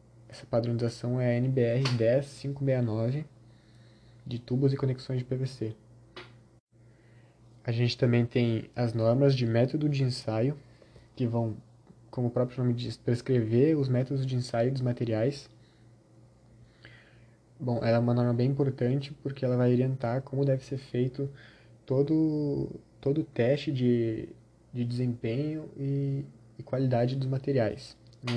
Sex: male